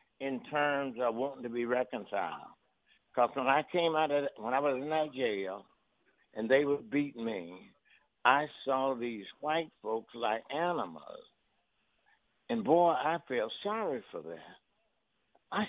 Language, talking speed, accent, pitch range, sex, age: English, 155 wpm, American, 110-160 Hz, male, 60-79